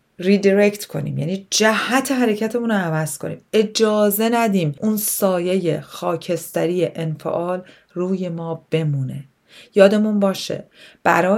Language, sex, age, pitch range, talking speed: Persian, female, 30-49, 155-195 Hz, 100 wpm